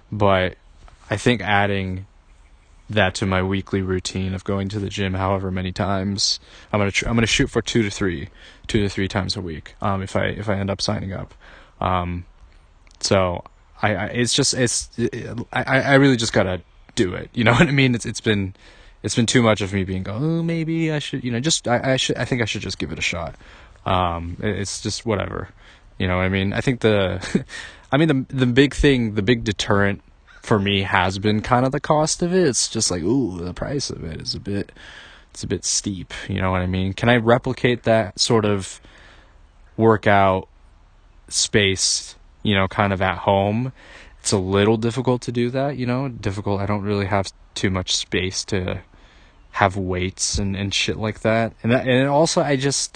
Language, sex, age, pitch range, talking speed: English, male, 20-39, 95-120 Hz, 215 wpm